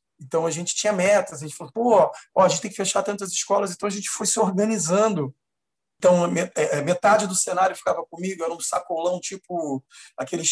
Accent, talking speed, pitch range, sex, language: Brazilian, 195 wpm, 155-195 Hz, male, Portuguese